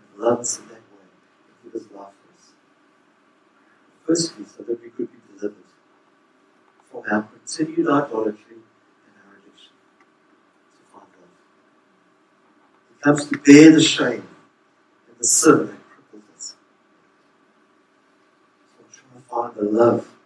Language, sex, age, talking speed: English, male, 60-79, 140 wpm